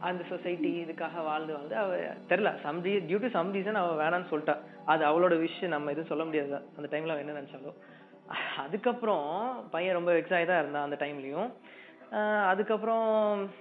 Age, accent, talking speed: 20-39, native, 195 wpm